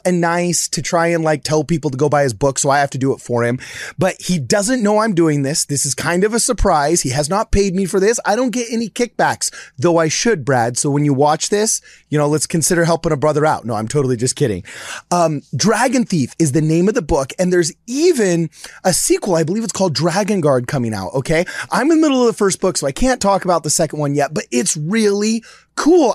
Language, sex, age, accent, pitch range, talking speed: English, male, 30-49, American, 145-220 Hz, 255 wpm